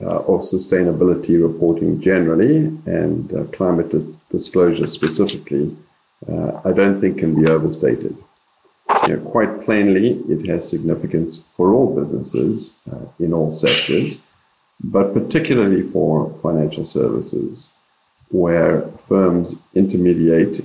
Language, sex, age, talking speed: English, male, 50-69, 110 wpm